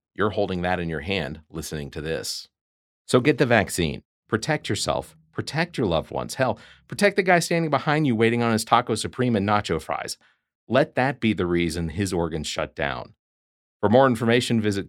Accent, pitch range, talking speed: American, 85-115 Hz, 190 wpm